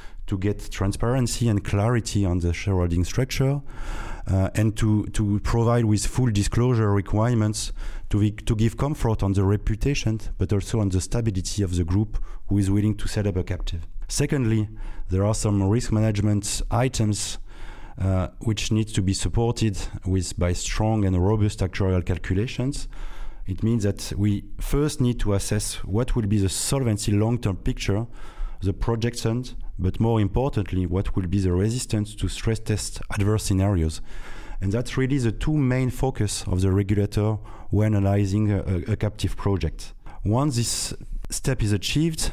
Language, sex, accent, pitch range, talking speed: English, male, French, 95-115 Hz, 160 wpm